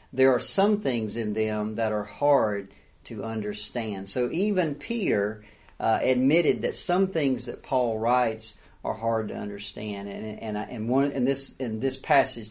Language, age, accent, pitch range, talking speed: English, 40-59, American, 115-145 Hz, 170 wpm